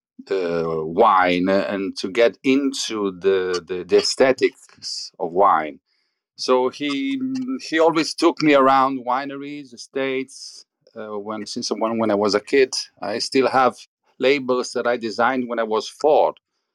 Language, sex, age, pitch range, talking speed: English, male, 40-59, 105-140 Hz, 150 wpm